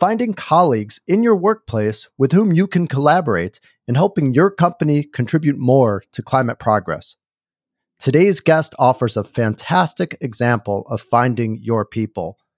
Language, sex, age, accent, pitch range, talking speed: English, male, 40-59, American, 120-160 Hz, 140 wpm